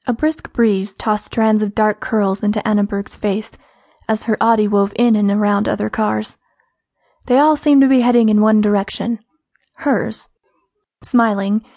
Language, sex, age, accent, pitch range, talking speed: English, female, 20-39, American, 210-260 Hz, 160 wpm